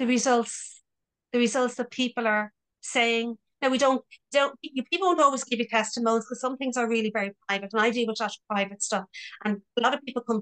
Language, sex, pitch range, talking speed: English, female, 210-255 Hz, 225 wpm